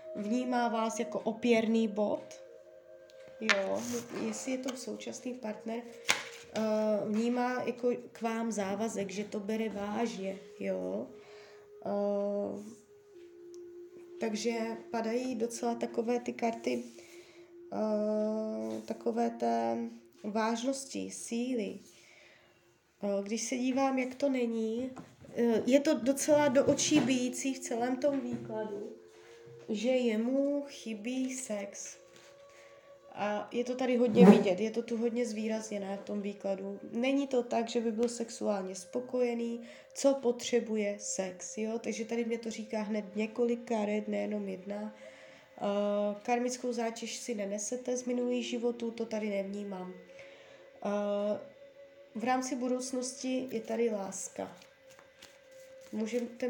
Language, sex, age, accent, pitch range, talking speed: Czech, female, 20-39, native, 205-255 Hz, 110 wpm